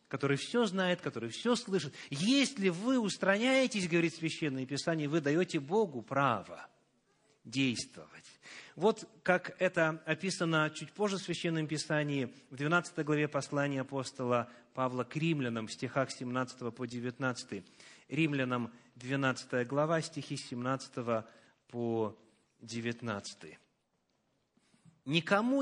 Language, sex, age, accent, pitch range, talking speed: Russian, male, 30-49, native, 130-200 Hz, 110 wpm